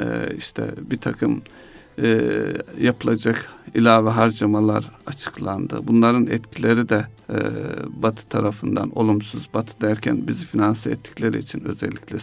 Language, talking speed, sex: Turkish, 110 wpm, male